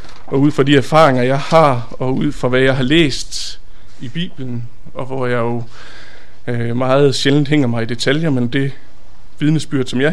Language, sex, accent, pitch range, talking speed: Danish, male, native, 115-140 Hz, 190 wpm